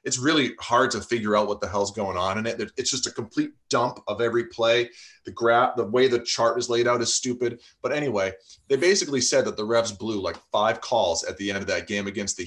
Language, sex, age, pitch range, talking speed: English, male, 30-49, 105-135 Hz, 250 wpm